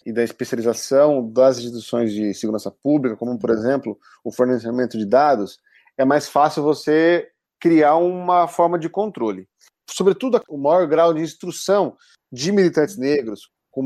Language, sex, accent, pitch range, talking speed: Portuguese, male, Brazilian, 130-165 Hz, 145 wpm